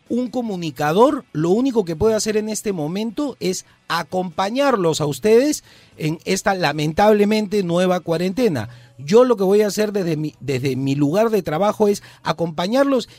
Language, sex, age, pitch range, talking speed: Spanish, male, 40-59, 140-210 Hz, 150 wpm